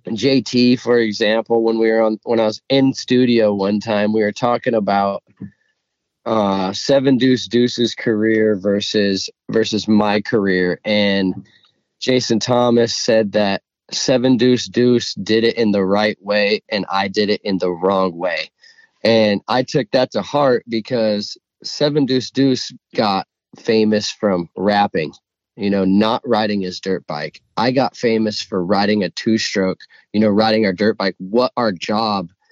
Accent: American